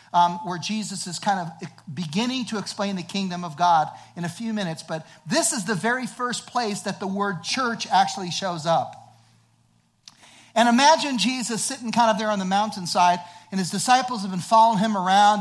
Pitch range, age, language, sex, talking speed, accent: 160-215 Hz, 50-69, English, male, 190 wpm, American